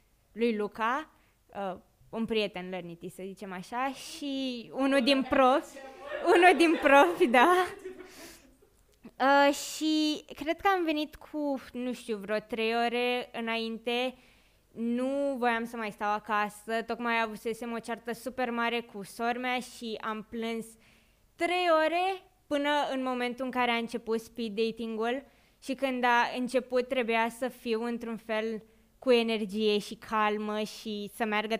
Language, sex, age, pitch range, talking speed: Romanian, female, 20-39, 215-270 Hz, 140 wpm